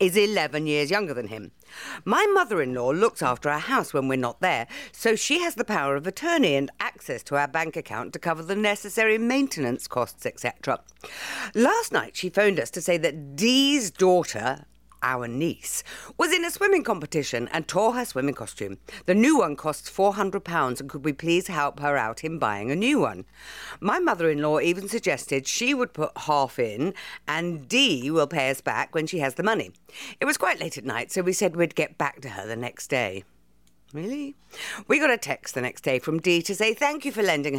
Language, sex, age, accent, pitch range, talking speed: English, female, 50-69, British, 140-215 Hz, 205 wpm